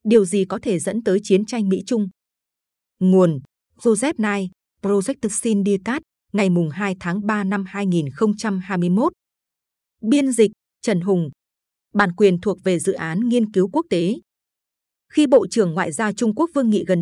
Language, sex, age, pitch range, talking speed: Vietnamese, female, 20-39, 180-230 Hz, 155 wpm